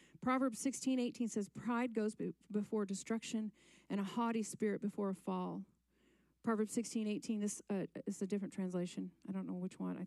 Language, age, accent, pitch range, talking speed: English, 40-59, American, 200-255 Hz, 180 wpm